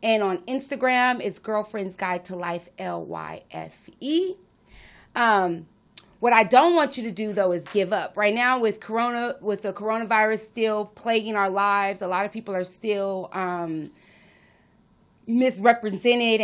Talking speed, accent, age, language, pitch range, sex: 145 wpm, American, 30-49, English, 190-230 Hz, female